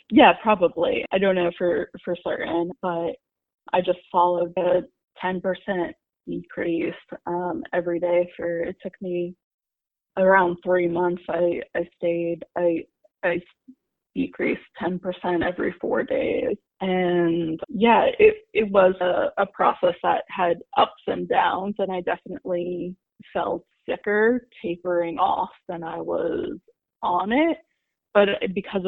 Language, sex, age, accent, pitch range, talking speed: English, female, 20-39, American, 175-220 Hz, 130 wpm